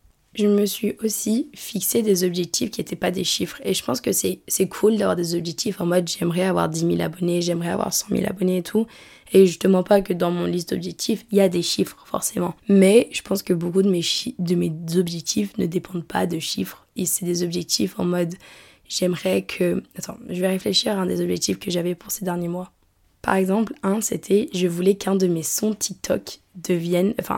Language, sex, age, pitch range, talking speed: French, female, 20-39, 175-200 Hz, 220 wpm